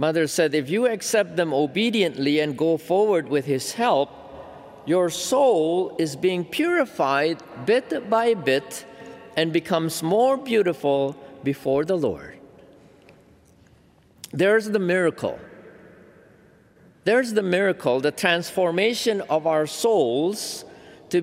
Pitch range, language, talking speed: 130-180 Hz, English, 115 wpm